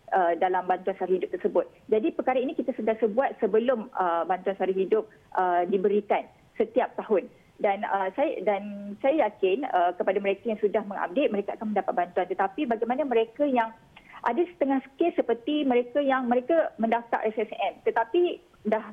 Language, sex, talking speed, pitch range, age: Malay, female, 160 wpm, 195-260 Hz, 30-49